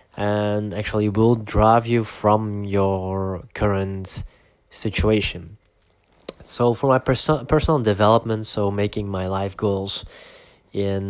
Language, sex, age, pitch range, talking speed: English, male, 20-39, 100-115 Hz, 115 wpm